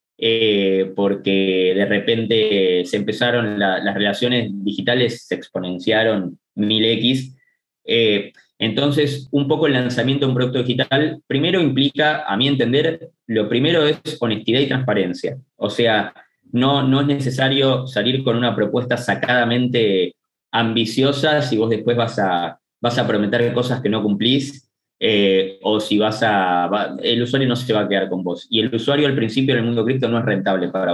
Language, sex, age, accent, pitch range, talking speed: English, male, 20-39, Argentinian, 105-135 Hz, 170 wpm